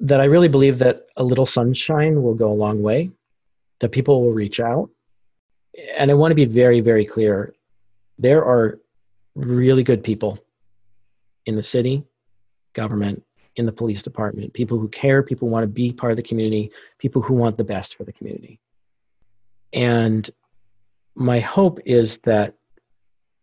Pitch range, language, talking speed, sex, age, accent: 105-130 Hz, English, 165 wpm, male, 40-59, American